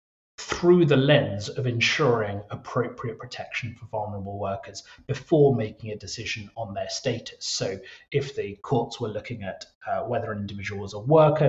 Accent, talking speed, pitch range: British, 160 wpm, 115-145 Hz